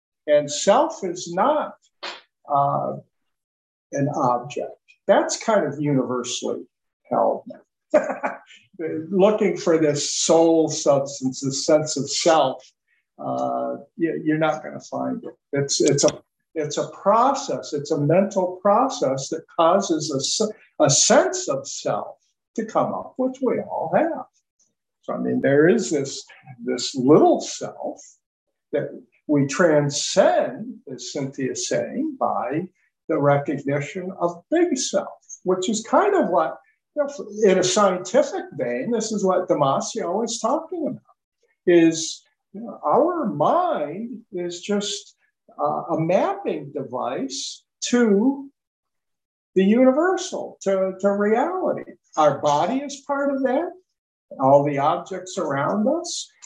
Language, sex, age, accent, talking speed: English, male, 50-69, American, 130 wpm